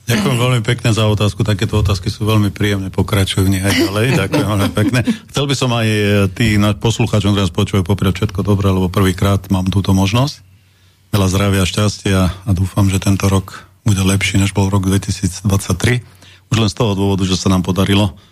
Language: Slovak